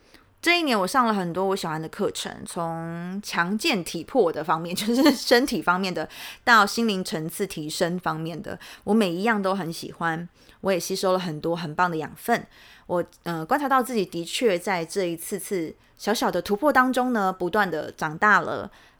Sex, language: female, Chinese